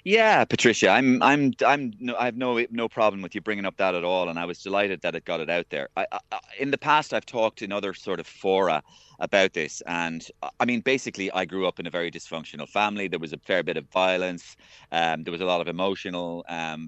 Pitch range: 85-115 Hz